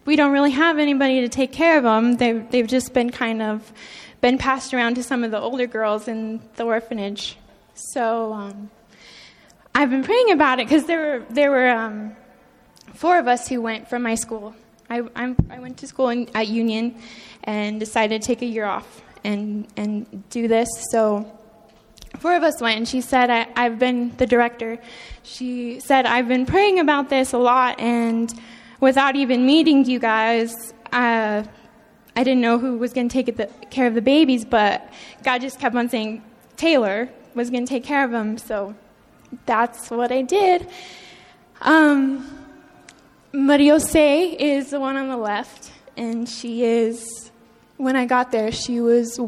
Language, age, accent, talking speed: English, 10-29, American, 180 wpm